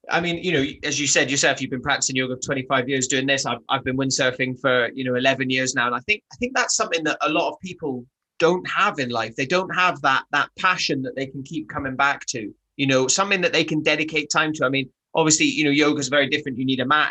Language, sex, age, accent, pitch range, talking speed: English, male, 30-49, British, 135-170 Hz, 275 wpm